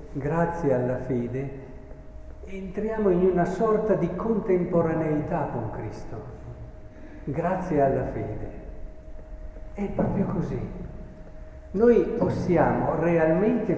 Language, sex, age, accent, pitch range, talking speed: Italian, male, 50-69, native, 140-190 Hz, 85 wpm